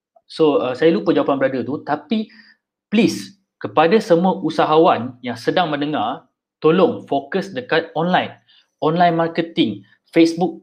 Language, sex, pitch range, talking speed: Malay, male, 145-195 Hz, 125 wpm